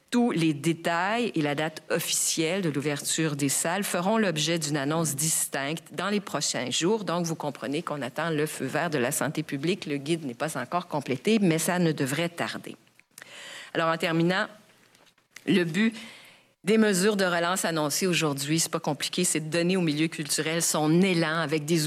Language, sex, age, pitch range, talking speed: French, female, 50-69, 155-195 Hz, 185 wpm